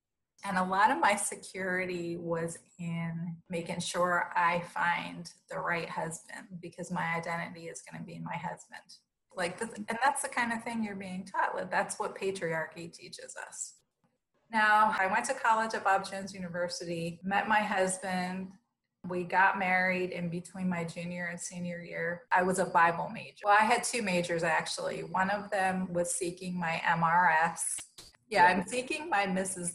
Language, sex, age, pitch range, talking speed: English, female, 30-49, 175-210 Hz, 170 wpm